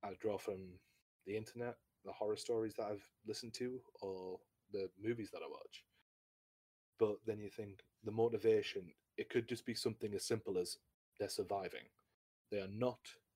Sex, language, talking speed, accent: male, English, 165 wpm, British